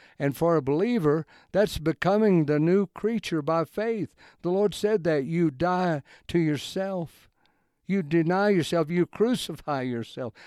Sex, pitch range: male, 140-180 Hz